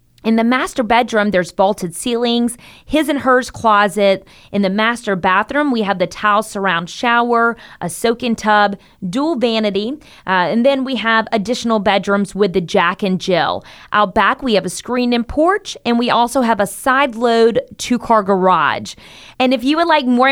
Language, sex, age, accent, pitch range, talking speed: English, female, 30-49, American, 195-250 Hz, 175 wpm